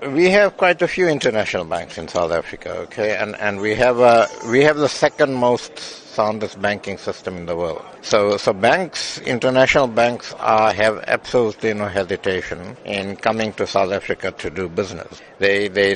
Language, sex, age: English, male, 60-79